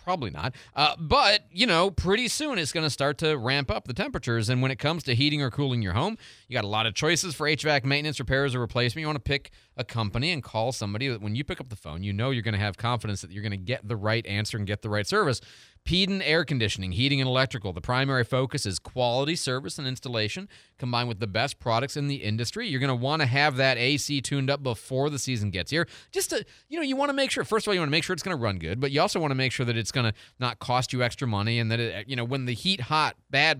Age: 30-49